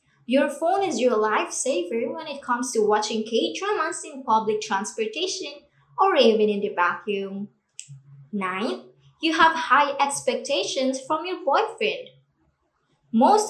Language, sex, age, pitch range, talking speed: Filipino, male, 20-39, 215-310 Hz, 125 wpm